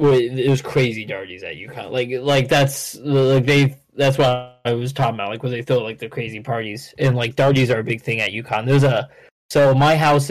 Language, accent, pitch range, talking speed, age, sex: English, American, 125-140 Hz, 225 wpm, 20-39, male